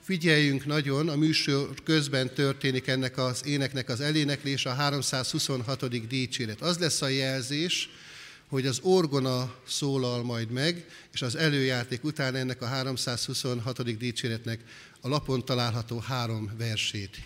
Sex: male